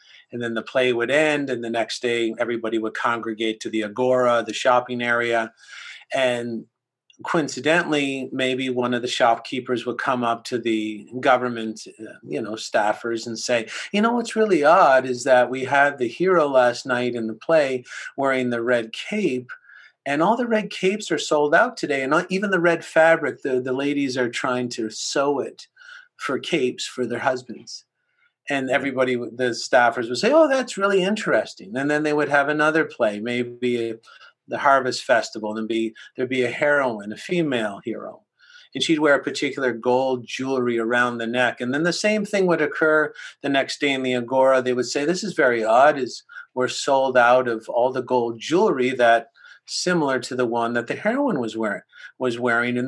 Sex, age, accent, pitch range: male, 40-59, American, 120-150 Hz